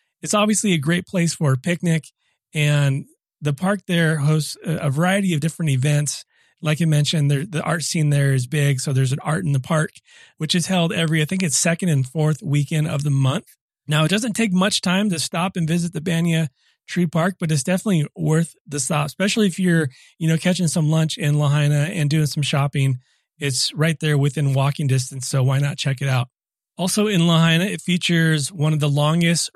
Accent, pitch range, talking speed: American, 150-175 Hz, 210 wpm